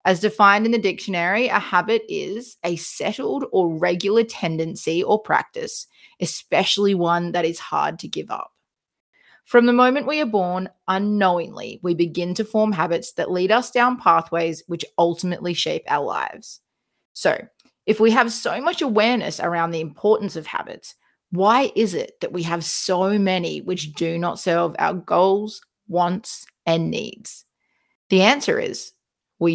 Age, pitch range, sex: 30-49, 170-220 Hz, female